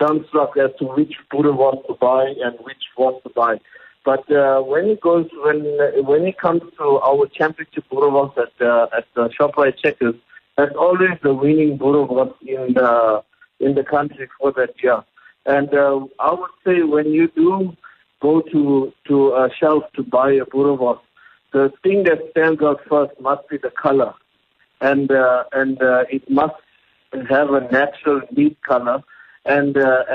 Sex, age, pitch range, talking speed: male, 50-69, 125-150 Hz, 165 wpm